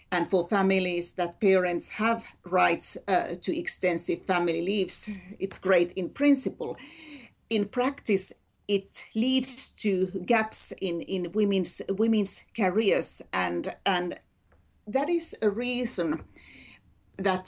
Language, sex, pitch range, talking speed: English, female, 185-230 Hz, 115 wpm